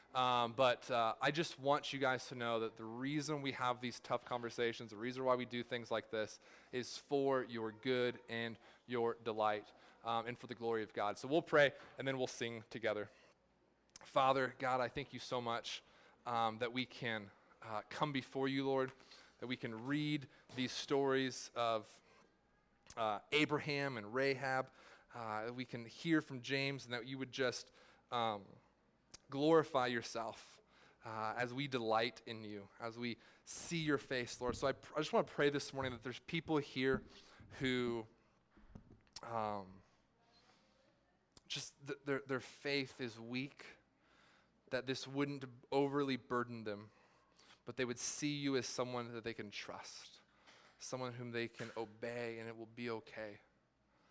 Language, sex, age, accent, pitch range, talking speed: English, male, 20-39, American, 115-135 Hz, 170 wpm